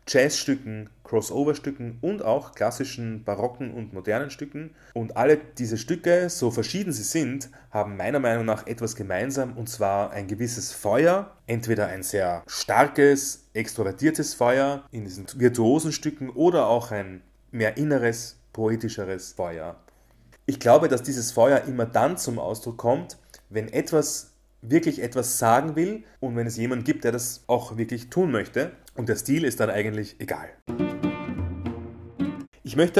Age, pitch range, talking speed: 30-49, 105-135 Hz, 150 wpm